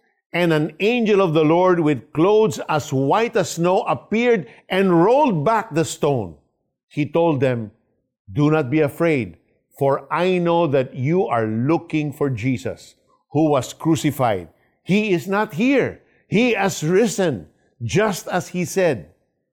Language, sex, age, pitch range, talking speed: Filipino, male, 50-69, 135-195 Hz, 150 wpm